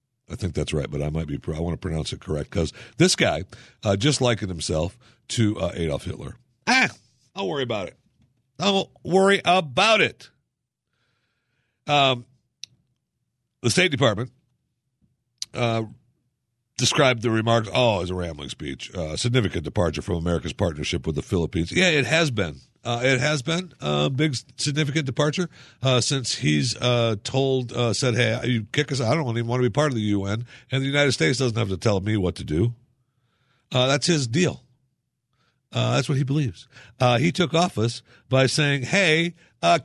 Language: English